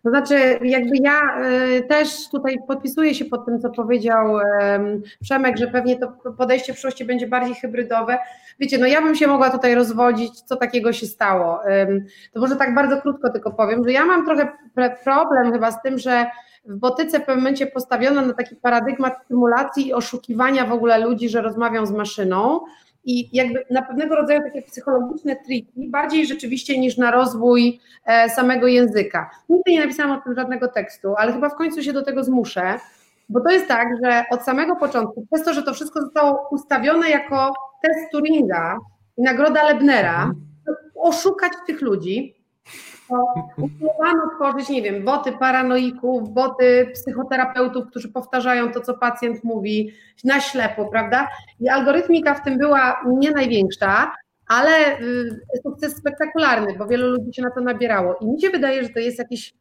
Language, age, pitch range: Polish, 30-49, 235-275 Hz